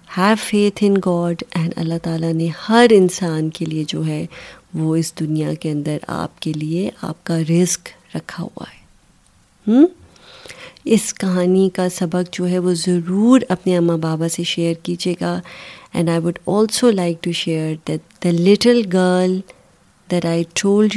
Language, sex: Urdu, female